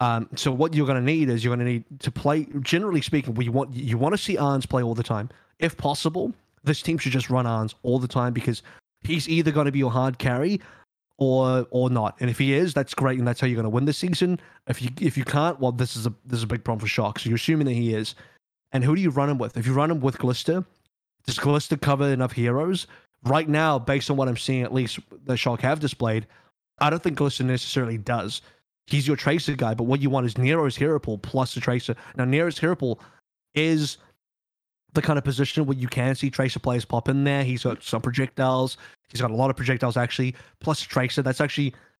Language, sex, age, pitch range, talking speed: English, male, 20-39, 125-145 Hz, 245 wpm